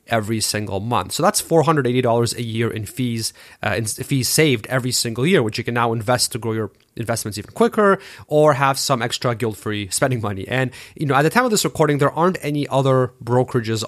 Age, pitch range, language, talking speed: 30-49, 115-145 Hz, English, 210 wpm